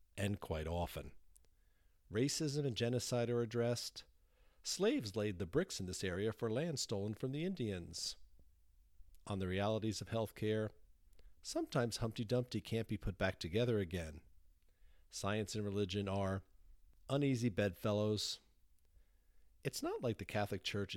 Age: 50-69